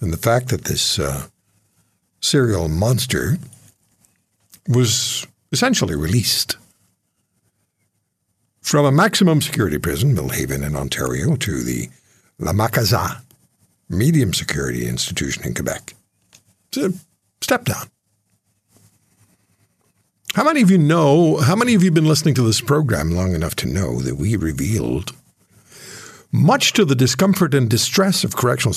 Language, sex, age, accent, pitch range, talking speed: English, male, 60-79, American, 95-145 Hz, 130 wpm